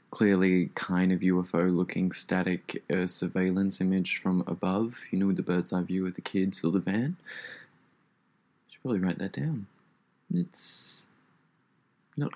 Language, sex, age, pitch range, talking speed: English, male, 20-39, 90-105 Hz, 140 wpm